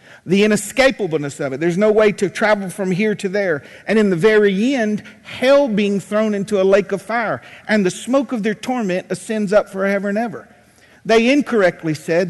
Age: 50-69